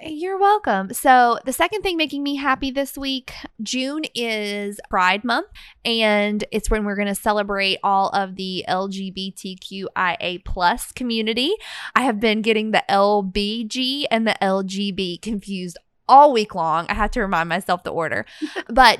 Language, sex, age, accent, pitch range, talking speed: English, female, 20-39, American, 195-250 Hz, 165 wpm